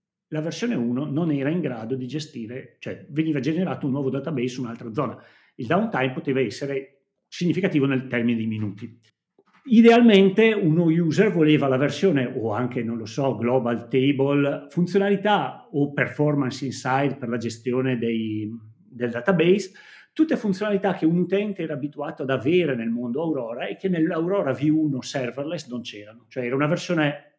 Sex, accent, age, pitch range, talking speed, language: male, native, 40-59, 130-170 Hz, 160 wpm, Italian